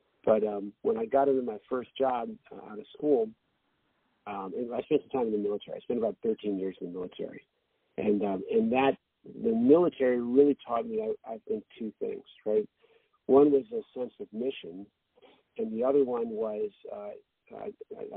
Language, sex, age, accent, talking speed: English, male, 50-69, American, 185 wpm